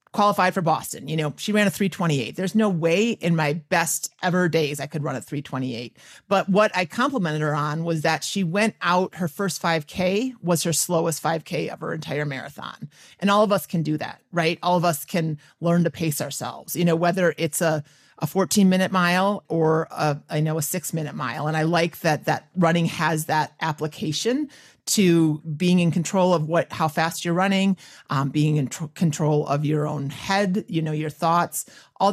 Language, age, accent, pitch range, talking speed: English, 30-49, American, 155-195 Hz, 205 wpm